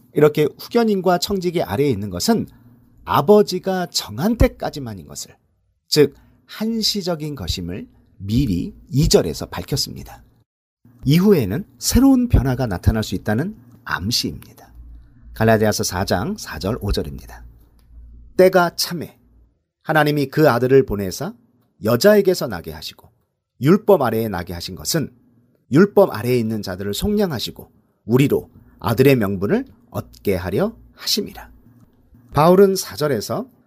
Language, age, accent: Korean, 40-59, native